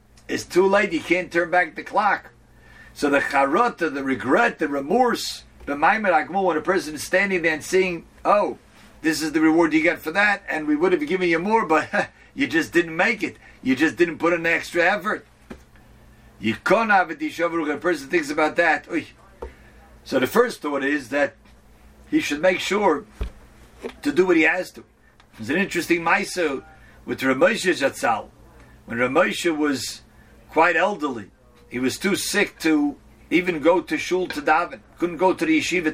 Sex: male